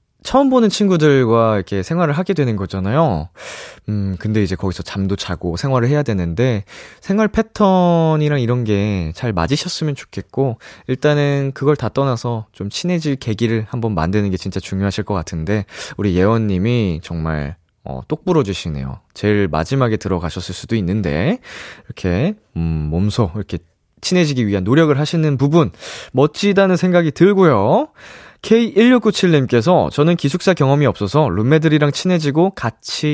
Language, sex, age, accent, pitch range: Korean, male, 20-39, native, 100-160 Hz